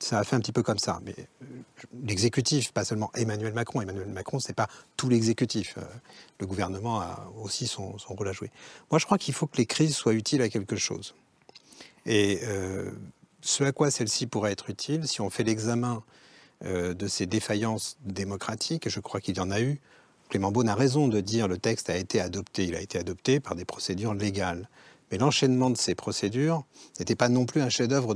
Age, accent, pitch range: 40-59, French, 105-135 Hz